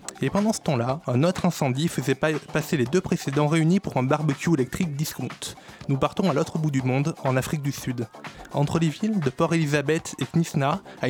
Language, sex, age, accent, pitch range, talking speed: French, male, 20-39, French, 145-190 Hz, 210 wpm